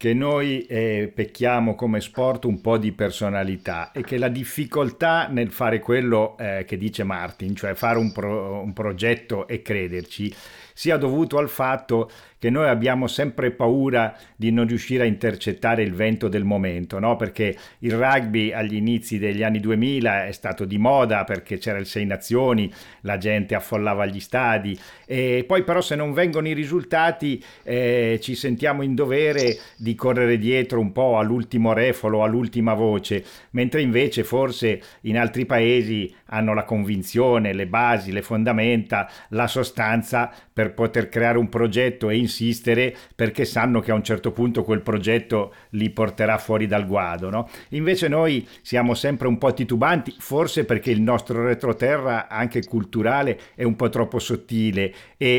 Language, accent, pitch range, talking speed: Italian, native, 105-120 Hz, 160 wpm